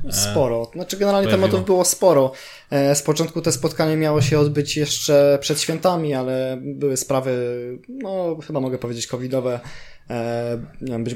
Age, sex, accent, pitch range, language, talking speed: 20-39, male, native, 130-155 Hz, Polish, 135 wpm